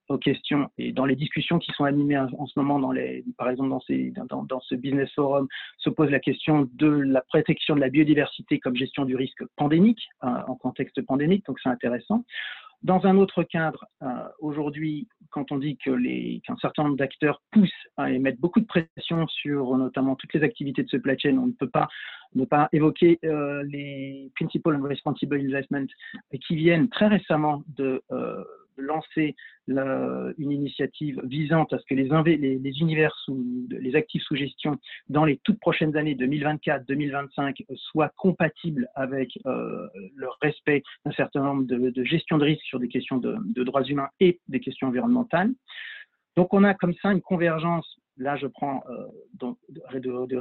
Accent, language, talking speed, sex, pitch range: French, French, 190 wpm, male, 135-165 Hz